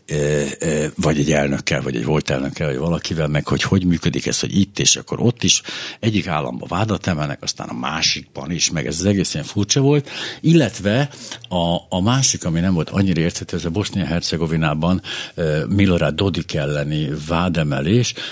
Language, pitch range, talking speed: Hungarian, 80-105 Hz, 165 wpm